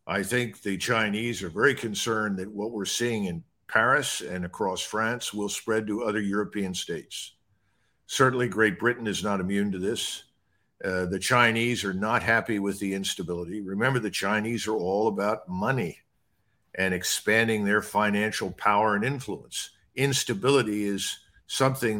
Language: English